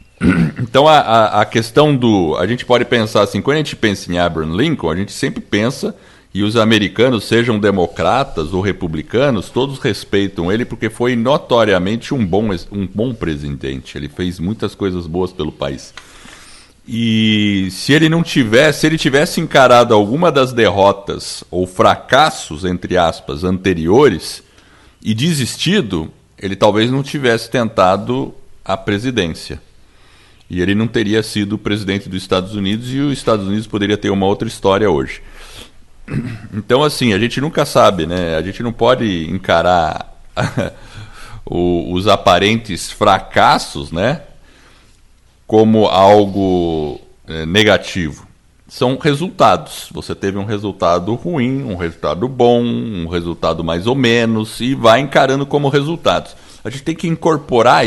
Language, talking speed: Portuguese, 140 wpm